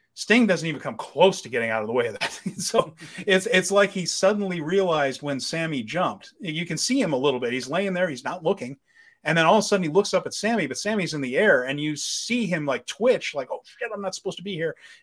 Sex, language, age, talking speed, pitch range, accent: male, English, 30-49, 270 wpm, 135-190 Hz, American